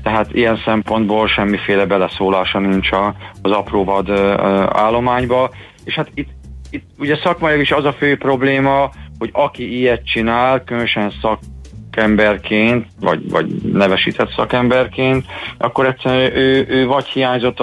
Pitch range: 100-120 Hz